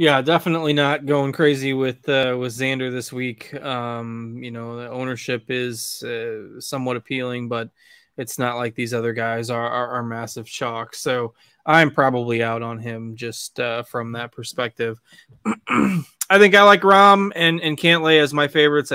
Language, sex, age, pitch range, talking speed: English, male, 20-39, 120-150 Hz, 170 wpm